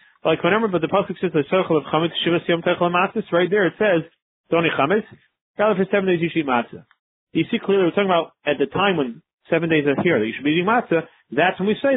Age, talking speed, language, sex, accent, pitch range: 30-49, 230 wpm, English, male, American, 135-185 Hz